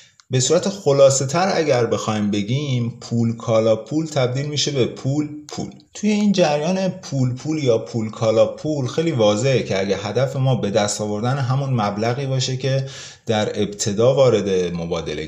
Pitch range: 100-135 Hz